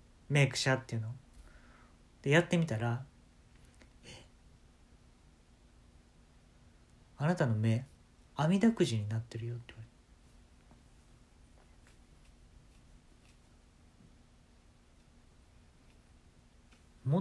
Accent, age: native, 40-59